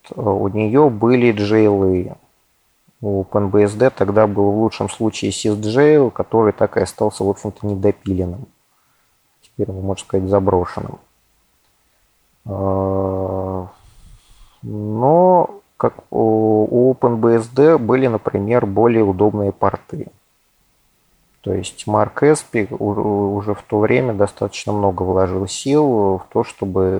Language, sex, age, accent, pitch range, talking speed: Russian, male, 30-49, native, 95-115 Hz, 105 wpm